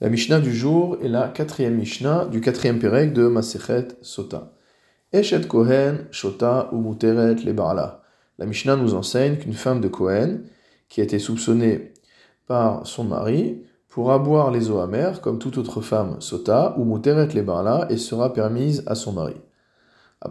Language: French